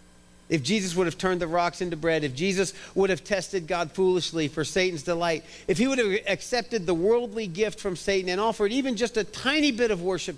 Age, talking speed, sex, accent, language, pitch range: 40-59, 220 wpm, male, American, English, 155-200 Hz